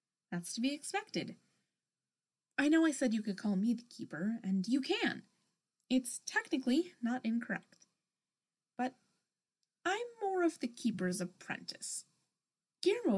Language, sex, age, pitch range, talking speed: English, female, 20-39, 195-295 Hz, 130 wpm